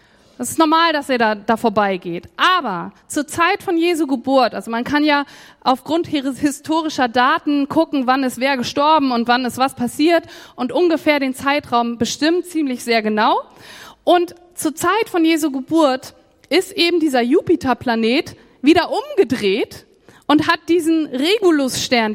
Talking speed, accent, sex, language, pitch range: 150 wpm, German, female, German, 250-335 Hz